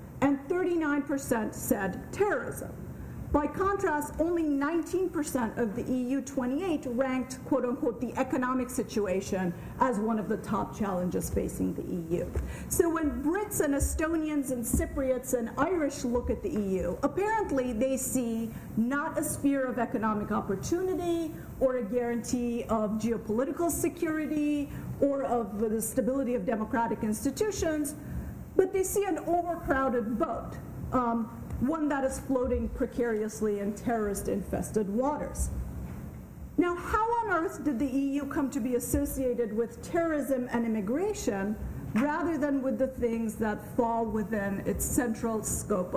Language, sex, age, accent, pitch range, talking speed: English, female, 50-69, American, 230-300 Hz, 135 wpm